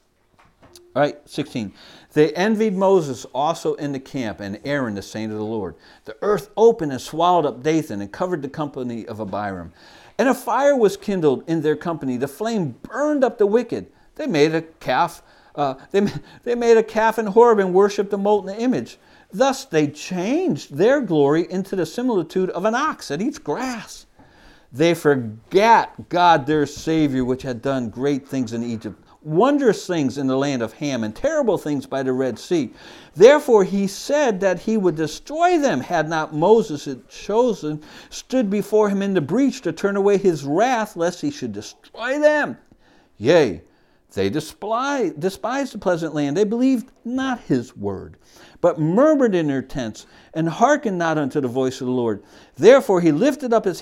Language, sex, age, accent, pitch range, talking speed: English, male, 50-69, American, 140-225 Hz, 180 wpm